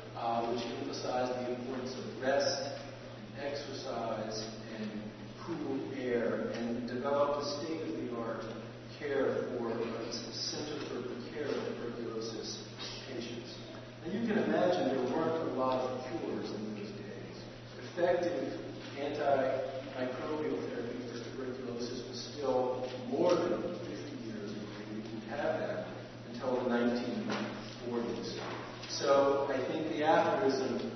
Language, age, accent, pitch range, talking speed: English, 50-69, American, 115-140 Hz, 120 wpm